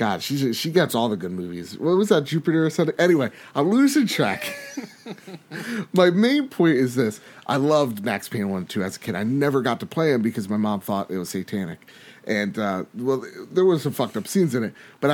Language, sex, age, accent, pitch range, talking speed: English, male, 30-49, American, 115-165 Hz, 220 wpm